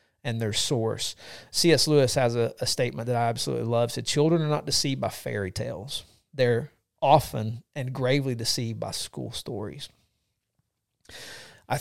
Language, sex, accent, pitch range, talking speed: English, male, American, 115-145 Hz, 160 wpm